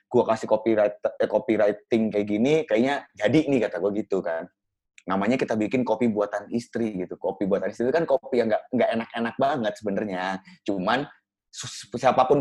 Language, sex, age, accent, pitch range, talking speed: Indonesian, male, 20-39, native, 110-135 Hz, 160 wpm